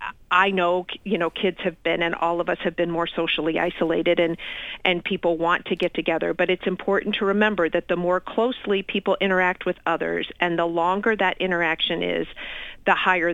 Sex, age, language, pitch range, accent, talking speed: female, 40-59, English, 170-200 Hz, American, 200 wpm